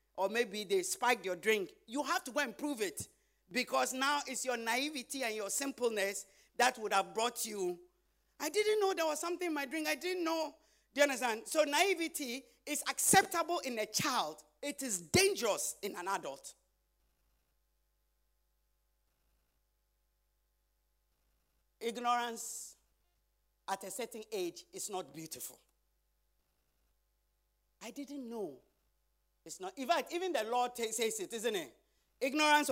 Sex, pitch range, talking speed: male, 185-290 Hz, 145 wpm